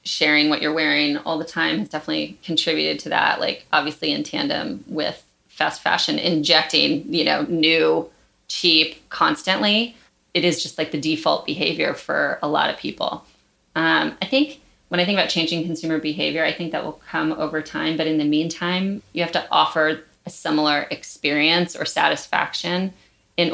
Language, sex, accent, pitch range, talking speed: English, female, American, 155-180 Hz, 175 wpm